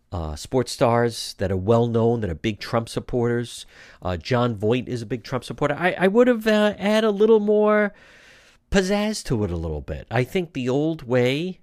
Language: English